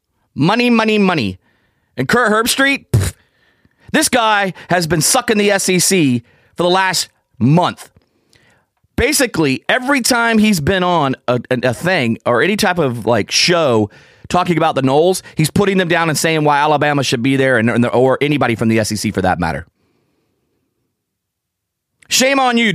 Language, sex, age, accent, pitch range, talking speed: English, male, 30-49, American, 125-185 Hz, 160 wpm